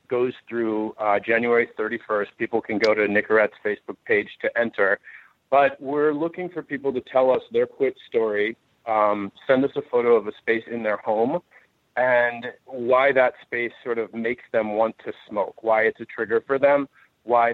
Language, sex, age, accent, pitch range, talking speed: English, male, 40-59, American, 110-130 Hz, 185 wpm